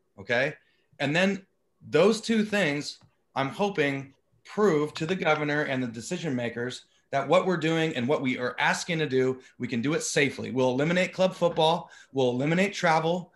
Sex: male